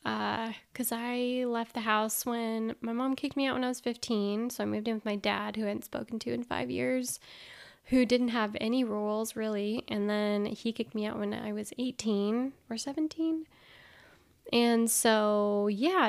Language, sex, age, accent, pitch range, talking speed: English, female, 10-29, American, 210-240 Hz, 195 wpm